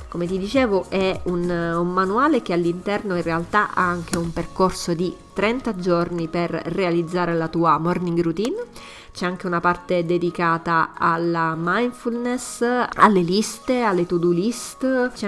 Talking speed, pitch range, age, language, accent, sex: 150 wpm, 170-205 Hz, 20-39, Italian, native, female